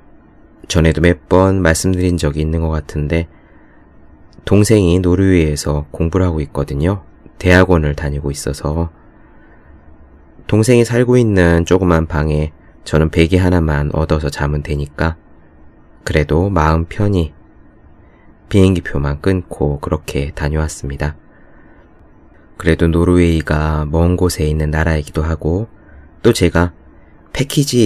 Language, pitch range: Korean, 75-90 Hz